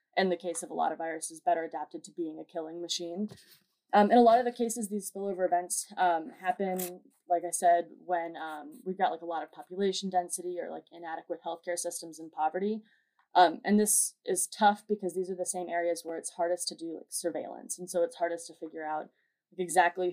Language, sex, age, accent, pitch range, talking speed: English, female, 20-39, American, 165-190 Hz, 220 wpm